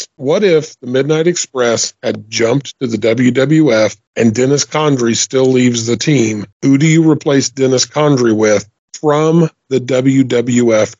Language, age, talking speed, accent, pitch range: English, 40-59, 145 wpm, American, 120-140 Hz